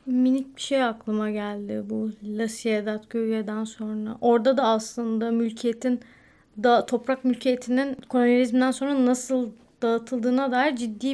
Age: 30-49